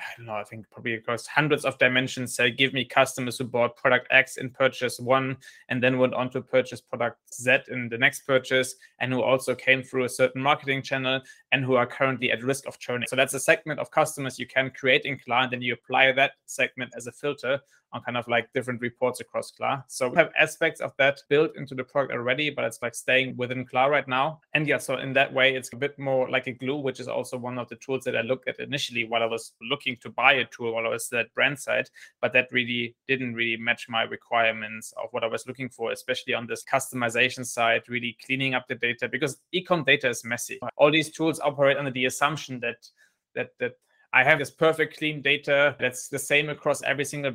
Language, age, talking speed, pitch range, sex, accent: English, 20-39, 235 wpm, 120-135 Hz, male, German